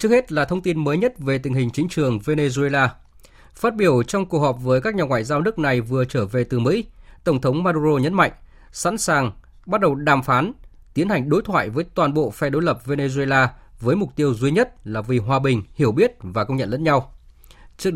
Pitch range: 125-165 Hz